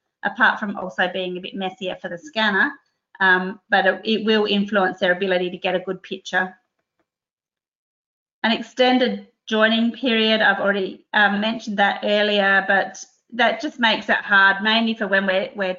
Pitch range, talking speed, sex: 190-220 Hz, 165 wpm, female